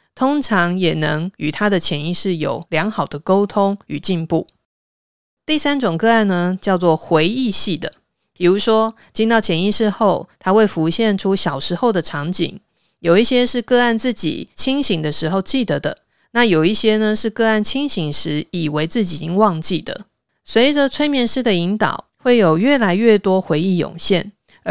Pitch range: 170-230 Hz